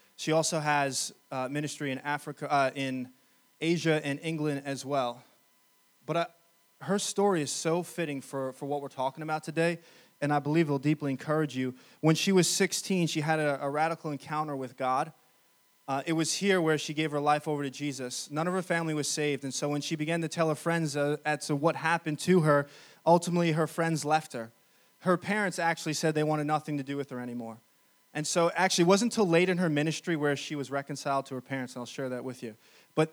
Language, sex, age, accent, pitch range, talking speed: English, male, 20-39, American, 145-175 Hz, 225 wpm